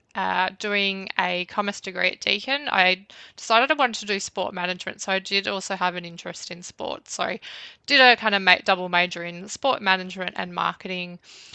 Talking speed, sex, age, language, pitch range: 195 wpm, female, 20-39, English, 185-210 Hz